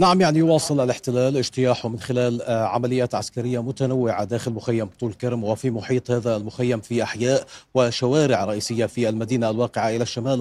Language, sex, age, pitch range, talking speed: Arabic, male, 40-59, 120-135 Hz, 155 wpm